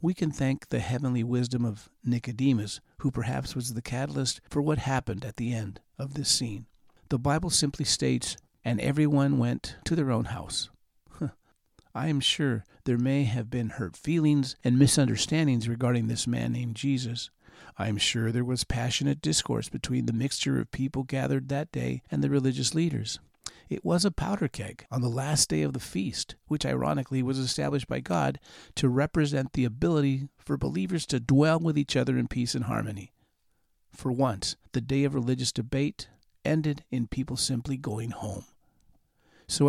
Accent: American